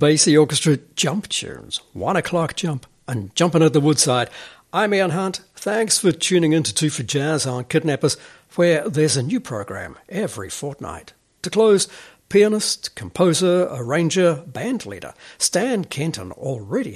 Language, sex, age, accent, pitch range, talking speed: English, male, 60-79, British, 135-180 Hz, 145 wpm